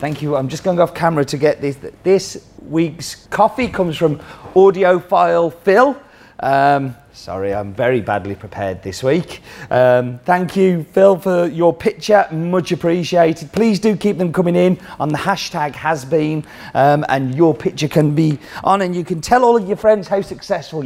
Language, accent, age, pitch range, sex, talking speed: English, British, 30-49, 135-180 Hz, male, 175 wpm